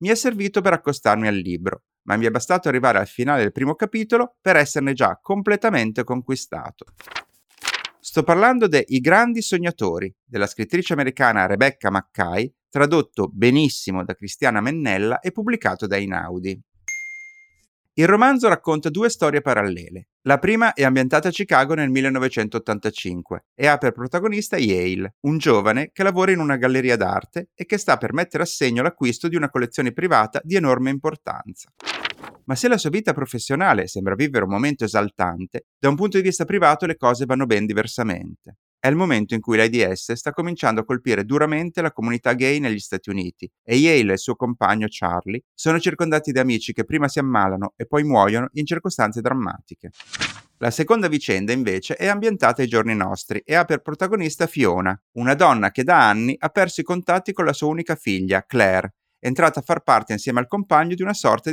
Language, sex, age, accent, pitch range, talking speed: Italian, male, 30-49, native, 110-170 Hz, 180 wpm